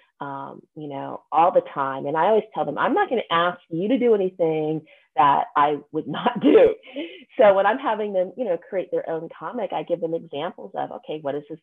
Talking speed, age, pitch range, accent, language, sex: 225 wpm, 30-49, 145-215 Hz, American, English, female